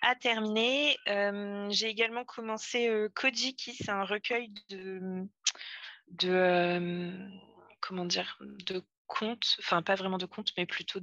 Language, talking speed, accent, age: French, 140 wpm, French, 20-39